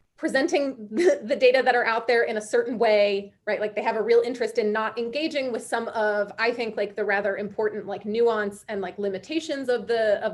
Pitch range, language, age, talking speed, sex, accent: 210-275 Hz, English, 30-49, 220 wpm, female, American